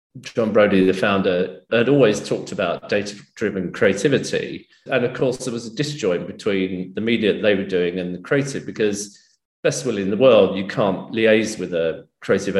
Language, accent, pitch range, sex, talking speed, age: English, British, 95-125 Hz, male, 185 wpm, 40-59